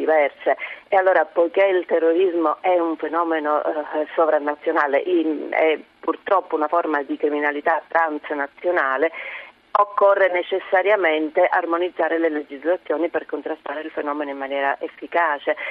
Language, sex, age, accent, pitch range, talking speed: Italian, female, 40-59, native, 150-175 Hz, 110 wpm